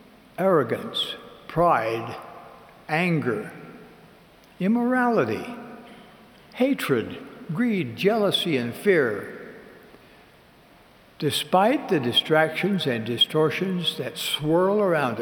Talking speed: 65 wpm